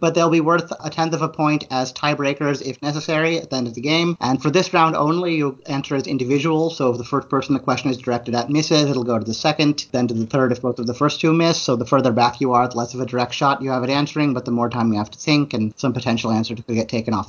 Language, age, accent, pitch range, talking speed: English, 30-49, American, 125-155 Hz, 300 wpm